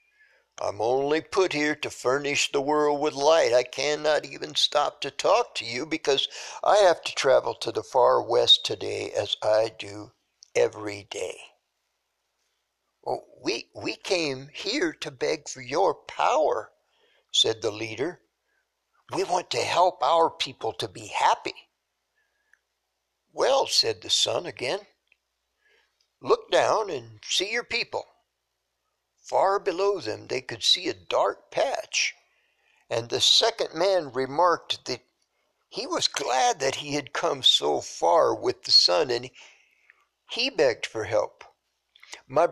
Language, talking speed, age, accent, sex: English, 140 wpm, 60-79, American, male